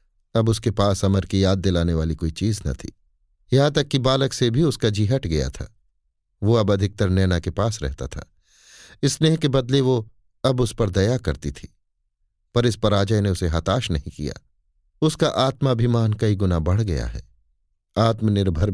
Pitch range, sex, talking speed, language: 85-120 Hz, male, 185 wpm, Hindi